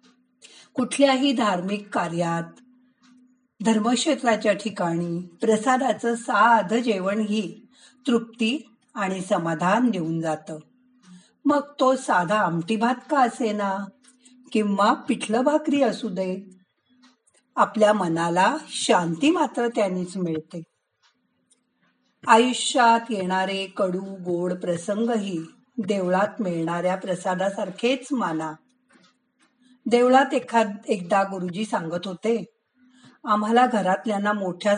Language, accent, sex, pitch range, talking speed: Marathi, native, female, 185-250 Hz, 80 wpm